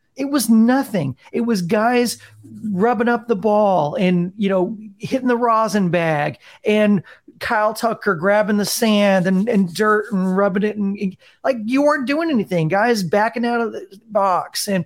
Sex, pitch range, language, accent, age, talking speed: male, 180-220 Hz, English, American, 40-59, 170 wpm